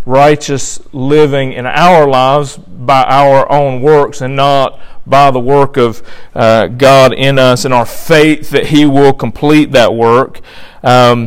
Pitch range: 135-185 Hz